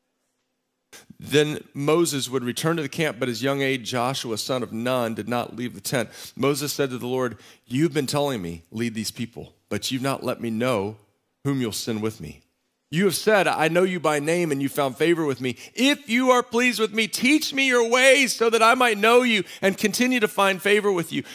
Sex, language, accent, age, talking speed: male, English, American, 40-59, 225 wpm